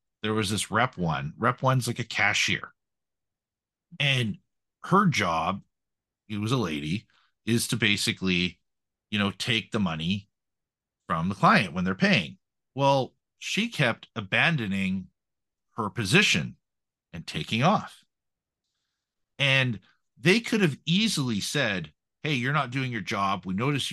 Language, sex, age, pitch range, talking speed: English, male, 50-69, 100-145 Hz, 135 wpm